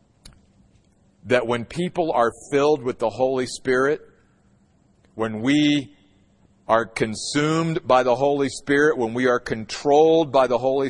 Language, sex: English, male